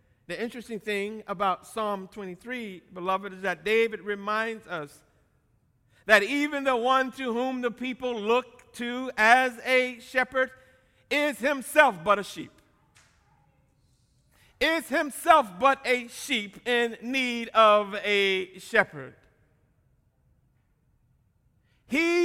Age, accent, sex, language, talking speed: 60-79, American, male, English, 110 wpm